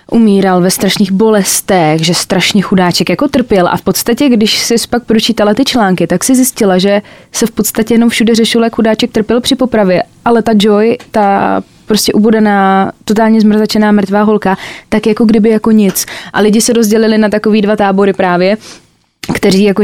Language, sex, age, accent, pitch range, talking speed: Czech, female, 20-39, native, 180-215 Hz, 180 wpm